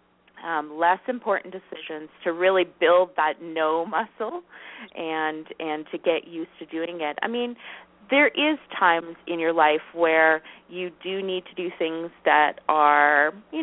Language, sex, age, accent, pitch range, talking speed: English, female, 30-49, American, 160-190 Hz, 160 wpm